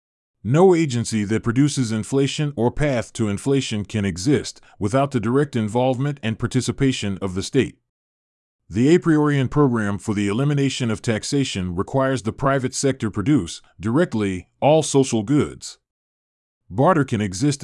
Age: 30-49